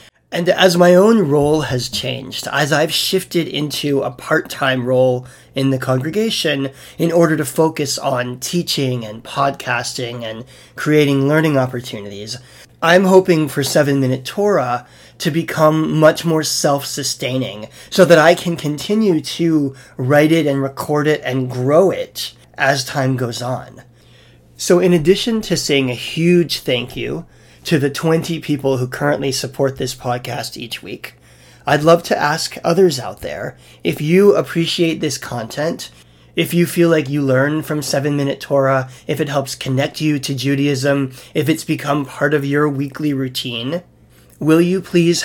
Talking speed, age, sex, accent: 155 wpm, 30-49, male, American